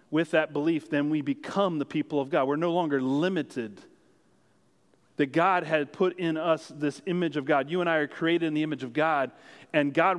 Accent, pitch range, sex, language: American, 140-165 Hz, male, English